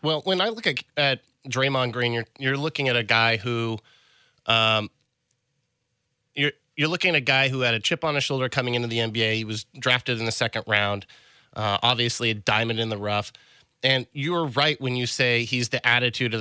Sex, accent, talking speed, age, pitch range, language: male, American, 210 wpm, 30-49, 115-135 Hz, English